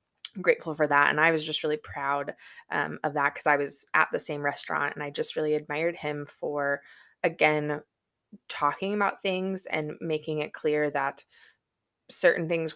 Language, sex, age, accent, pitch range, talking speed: English, female, 20-39, American, 150-180 Hz, 175 wpm